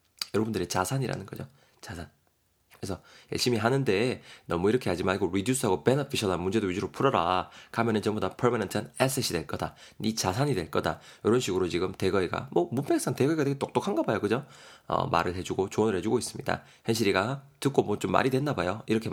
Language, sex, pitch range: Korean, male, 110-170 Hz